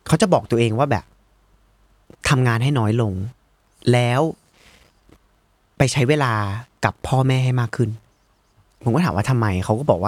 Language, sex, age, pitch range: Thai, male, 30-49, 105-140 Hz